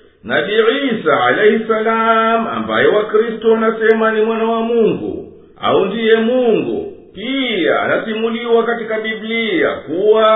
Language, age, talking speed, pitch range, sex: English, 50-69, 105 wpm, 220-260 Hz, male